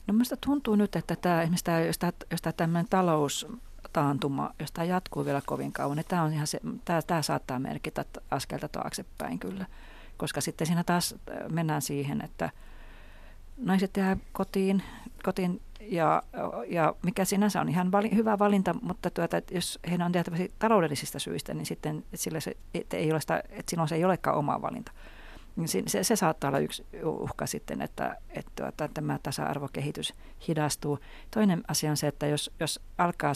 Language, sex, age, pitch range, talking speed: Finnish, female, 40-59, 140-180 Hz, 175 wpm